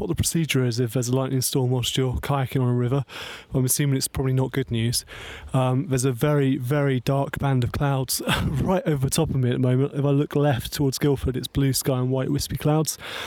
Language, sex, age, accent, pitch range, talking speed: English, male, 30-49, British, 125-140 Hz, 240 wpm